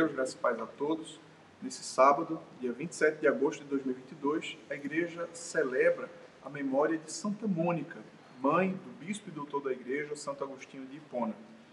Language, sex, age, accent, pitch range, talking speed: Portuguese, male, 40-59, Brazilian, 140-195 Hz, 170 wpm